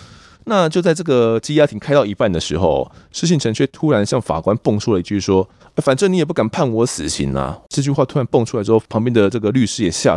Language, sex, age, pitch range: Chinese, male, 20-39, 90-120 Hz